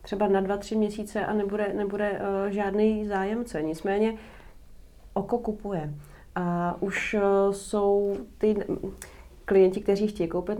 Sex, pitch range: female, 180-205 Hz